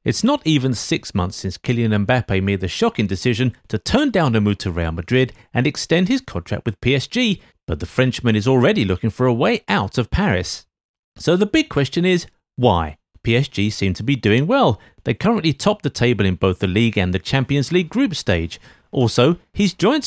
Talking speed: 205 wpm